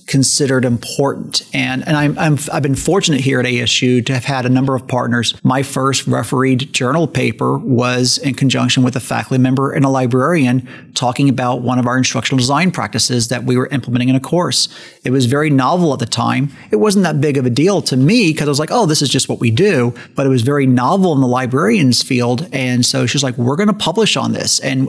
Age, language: 40-59, English